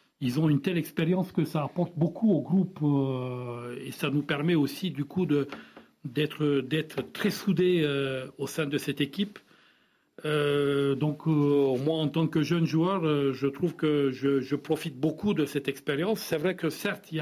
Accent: French